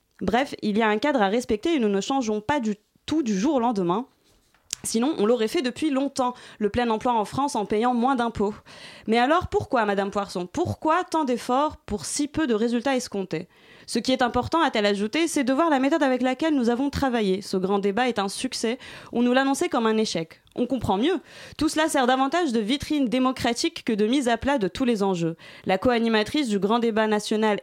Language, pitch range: French, 205-265 Hz